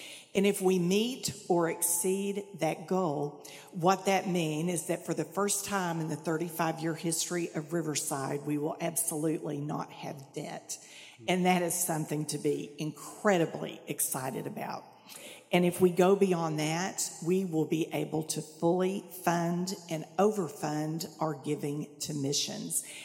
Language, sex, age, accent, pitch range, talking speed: English, female, 50-69, American, 155-185 Hz, 150 wpm